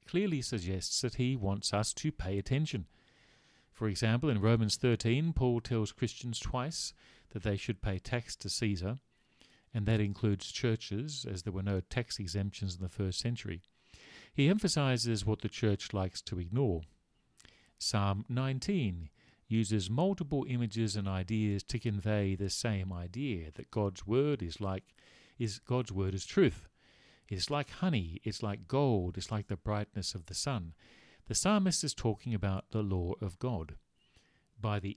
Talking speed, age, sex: 160 wpm, 40-59, male